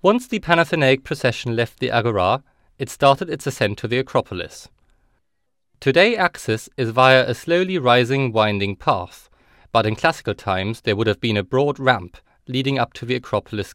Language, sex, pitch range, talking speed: English, male, 105-140 Hz, 170 wpm